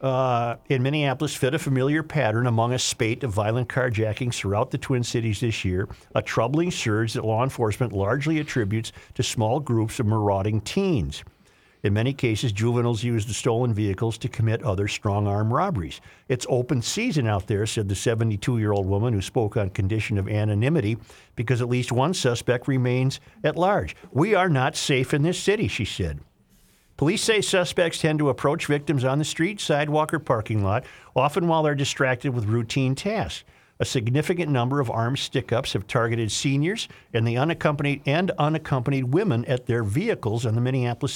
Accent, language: American, English